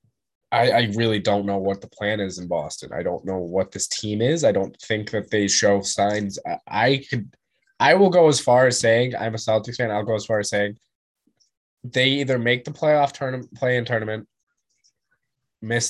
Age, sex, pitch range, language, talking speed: 20-39, male, 100-120 Hz, English, 210 wpm